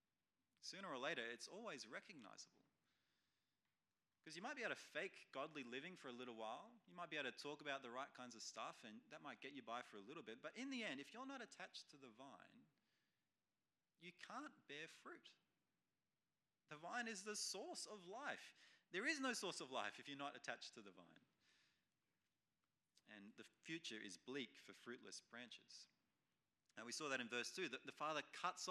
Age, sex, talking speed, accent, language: 30-49, male, 200 wpm, Australian, English